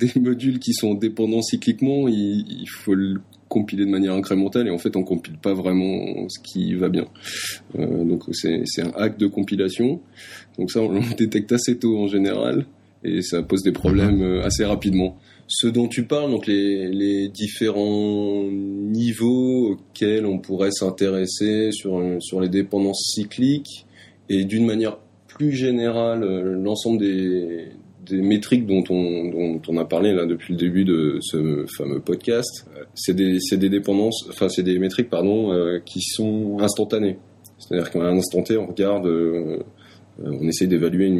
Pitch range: 90-110 Hz